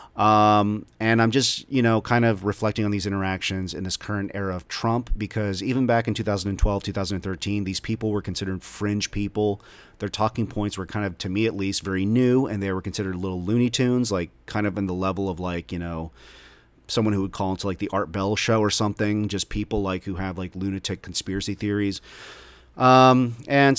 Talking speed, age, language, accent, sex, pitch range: 205 wpm, 30-49, English, American, male, 95-110 Hz